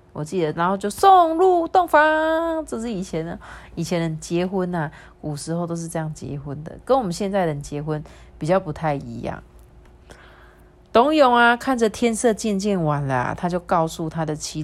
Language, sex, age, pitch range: Chinese, female, 30-49, 160-235 Hz